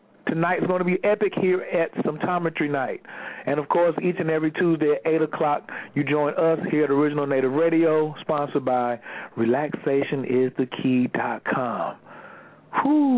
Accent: American